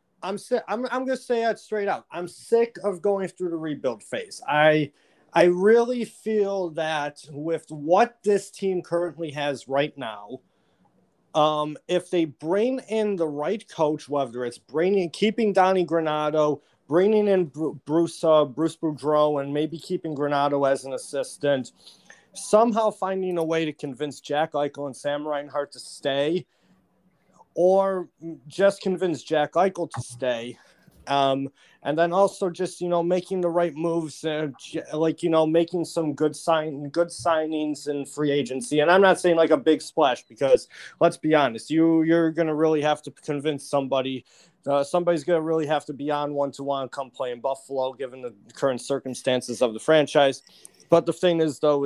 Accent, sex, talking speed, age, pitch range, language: American, male, 175 wpm, 30-49, 145-180 Hz, English